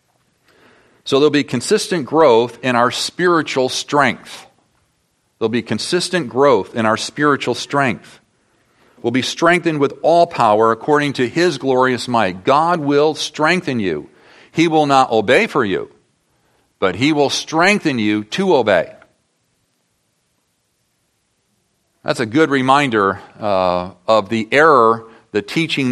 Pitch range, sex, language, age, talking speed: 110-145 Hz, male, English, 40-59, 125 wpm